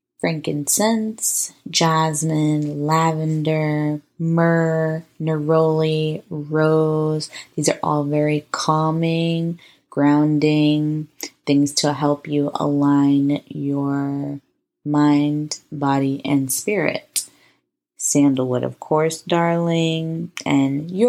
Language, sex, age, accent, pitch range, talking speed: English, female, 20-39, American, 145-170 Hz, 80 wpm